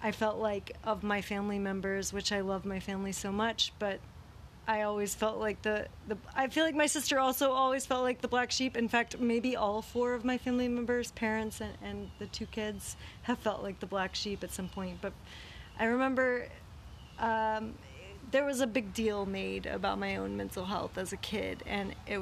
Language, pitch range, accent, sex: English, 200-255 Hz, American, female